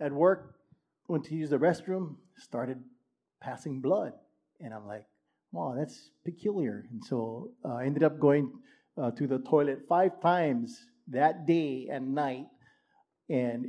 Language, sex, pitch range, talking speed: English, male, 130-165 Hz, 150 wpm